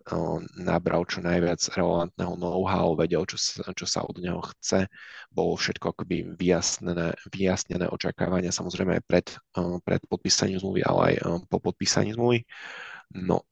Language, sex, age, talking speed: Czech, male, 20-39, 140 wpm